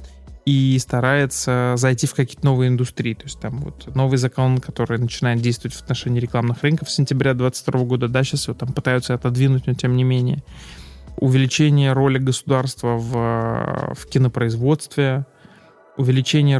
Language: Russian